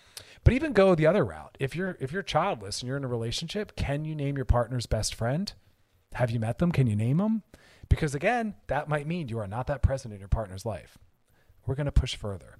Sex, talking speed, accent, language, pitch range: male, 240 wpm, American, English, 105-140 Hz